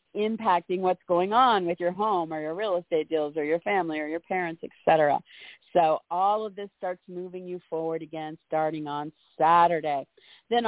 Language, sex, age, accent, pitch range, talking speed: English, female, 50-69, American, 165-195 Hz, 180 wpm